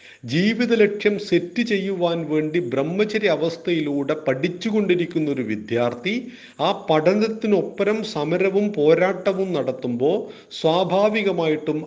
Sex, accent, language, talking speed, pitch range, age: male, native, Malayalam, 75 wpm, 125-175 Hz, 40-59